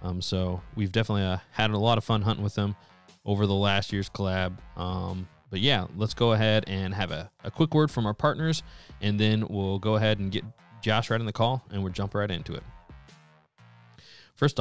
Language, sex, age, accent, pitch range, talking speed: English, male, 20-39, American, 100-115 Hz, 215 wpm